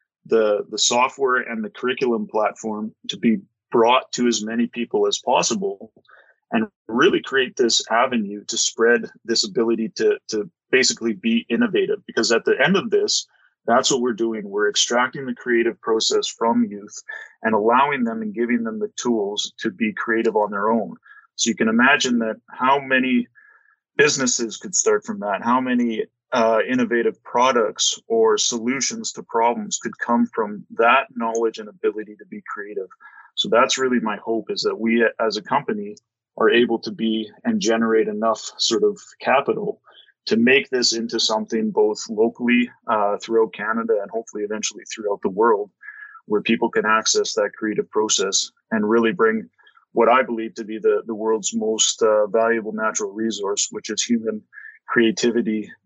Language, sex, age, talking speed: English, male, 30-49, 170 wpm